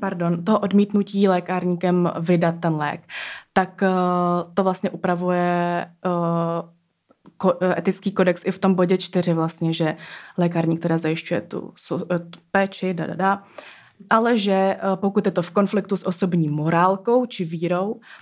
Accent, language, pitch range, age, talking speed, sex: native, Czech, 170-200 Hz, 20-39, 140 wpm, female